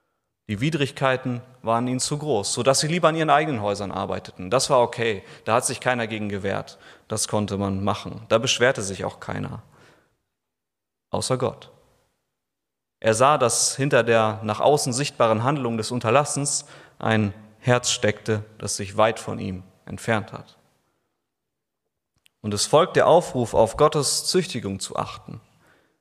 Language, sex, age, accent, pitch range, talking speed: German, male, 30-49, German, 105-130 Hz, 150 wpm